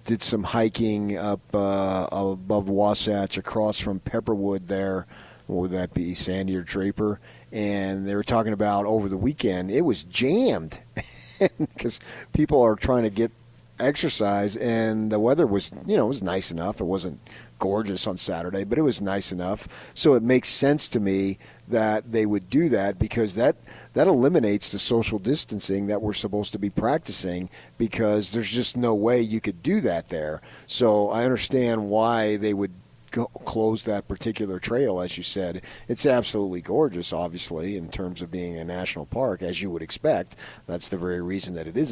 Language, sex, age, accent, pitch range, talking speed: English, male, 40-59, American, 95-110 Hz, 175 wpm